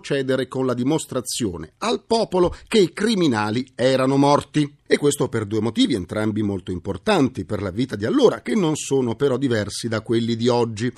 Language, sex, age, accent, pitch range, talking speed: Italian, male, 40-59, native, 105-165 Hz, 180 wpm